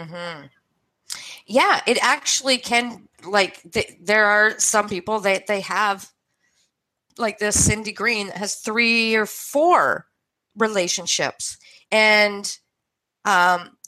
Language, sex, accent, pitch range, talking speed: English, female, American, 180-225 Hz, 110 wpm